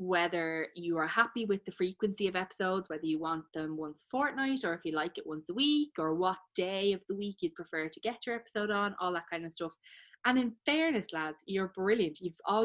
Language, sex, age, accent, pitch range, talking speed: English, female, 20-39, Irish, 160-185 Hz, 235 wpm